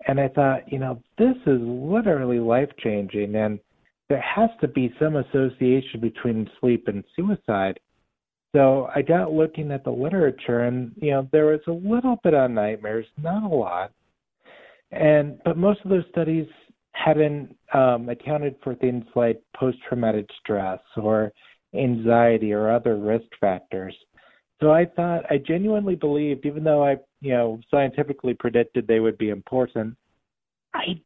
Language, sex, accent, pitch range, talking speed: English, male, American, 120-155 Hz, 150 wpm